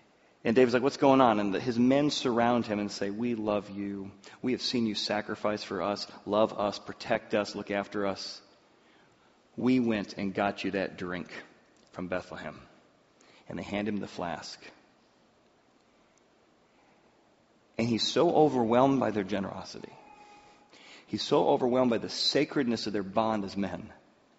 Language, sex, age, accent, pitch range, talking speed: English, male, 40-59, American, 100-125 Hz, 155 wpm